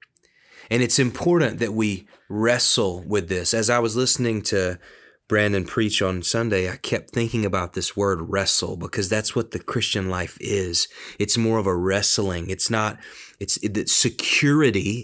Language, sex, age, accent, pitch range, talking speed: English, male, 30-49, American, 100-125 Hz, 165 wpm